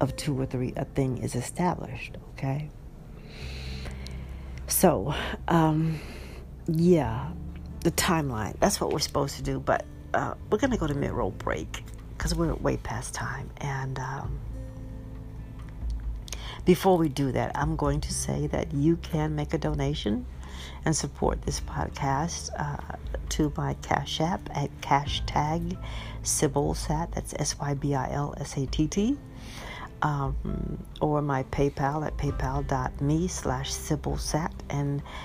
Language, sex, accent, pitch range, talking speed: English, female, American, 115-145 Hz, 125 wpm